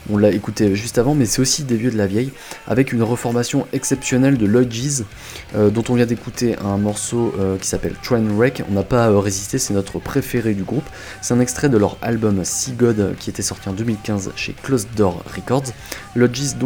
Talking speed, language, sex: 215 wpm, French, male